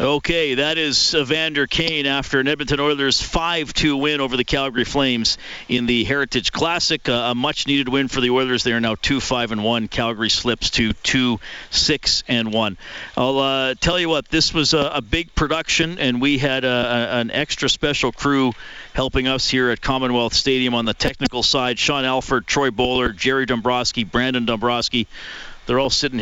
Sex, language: male, English